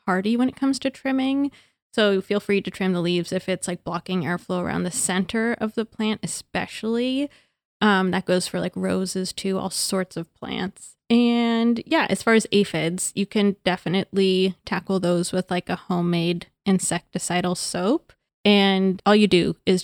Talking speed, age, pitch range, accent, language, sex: 170 wpm, 20-39, 185-230 Hz, American, English, female